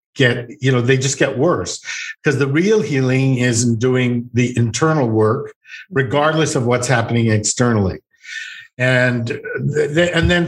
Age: 50-69